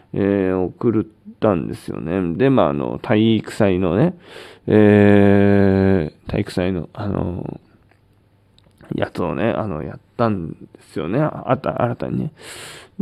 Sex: male